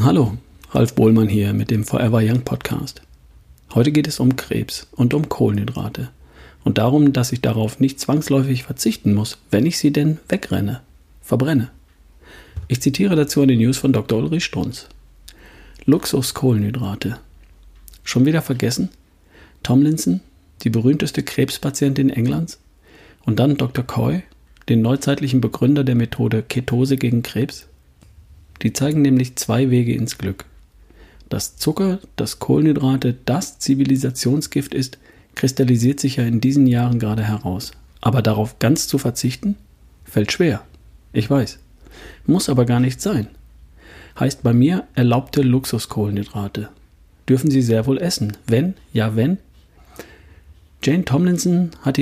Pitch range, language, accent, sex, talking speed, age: 95-135 Hz, German, German, male, 135 wpm, 50-69